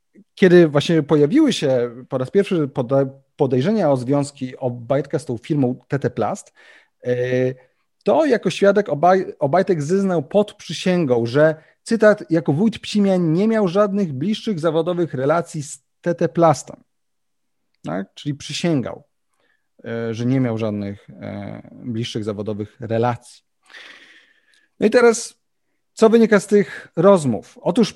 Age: 30-49